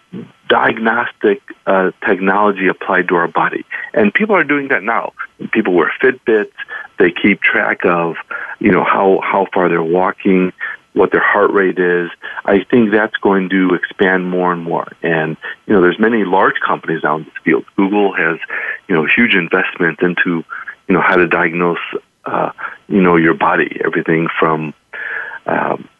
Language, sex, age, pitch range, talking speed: English, male, 40-59, 85-105 Hz, 165 wpm